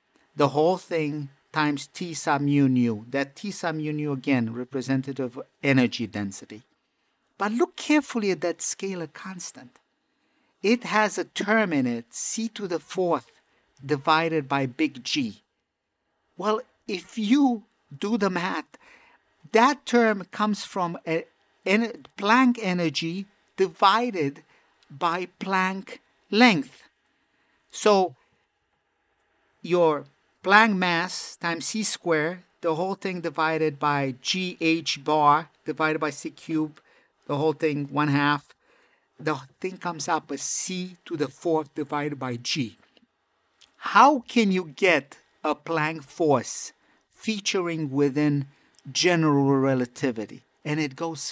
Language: English